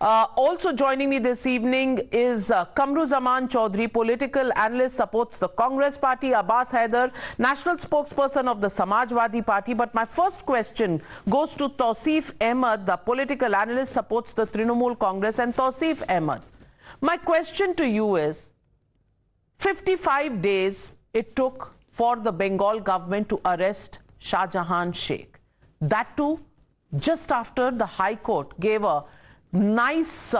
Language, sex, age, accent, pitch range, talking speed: English, female, 50-69, Indian, 220-300 Hz, 140 wpm